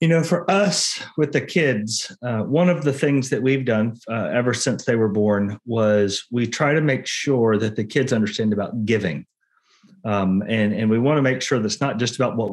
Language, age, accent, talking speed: English, 30-49, American, 220 wpm